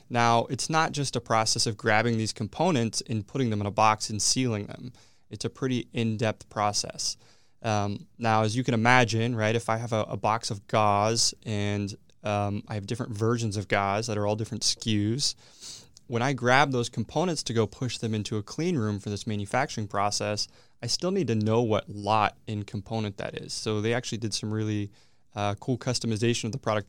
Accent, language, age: American, English, 20-39